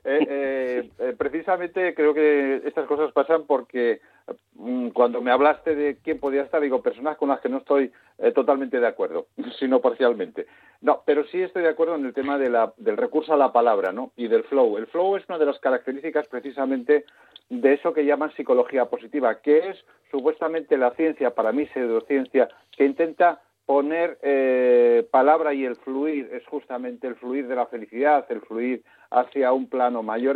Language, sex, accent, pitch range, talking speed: Spanish, male, Spanish, 130-165 Hz, 185 wpm